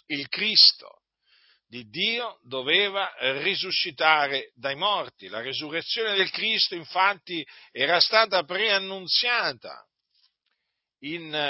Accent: native